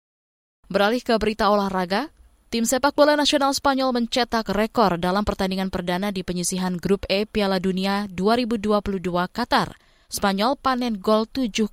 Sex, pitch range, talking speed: female, 185-230 Hz, 135 wpm